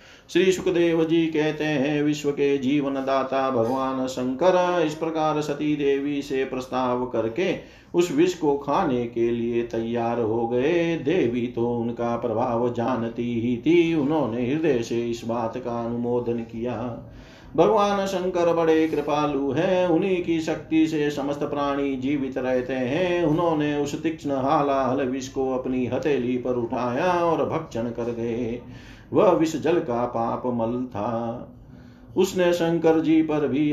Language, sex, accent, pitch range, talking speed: Hindi, male, native, 120-150 Hz, 135 wpm